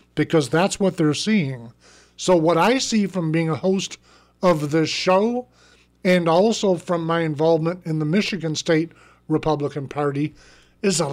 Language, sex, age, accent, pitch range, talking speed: English, male, 50-69, American, 155-210 Hz, 155 wpm